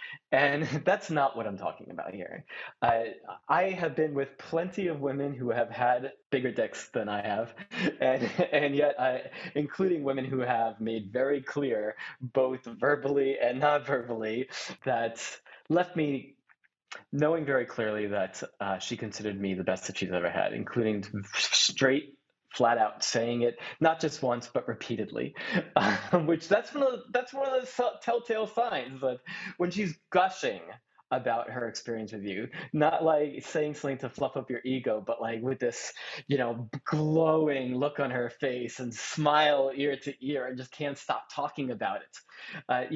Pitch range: 120-160 Hz